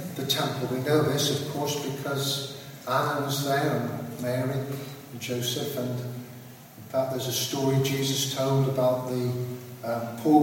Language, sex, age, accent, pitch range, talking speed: English, male, 40-59, British, 130-150 Hz, 155 wpm